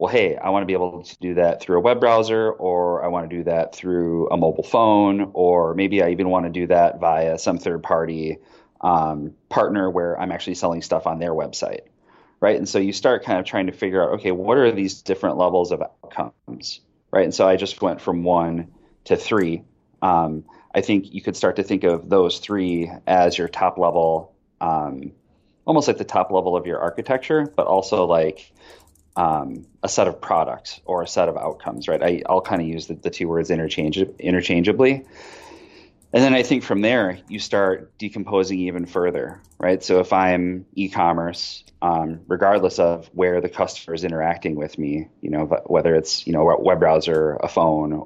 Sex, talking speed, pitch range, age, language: male, 200 wpm, 80-95 Hz, 30-49, English